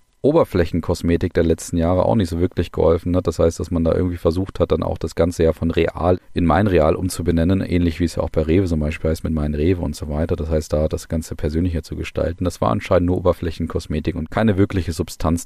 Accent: German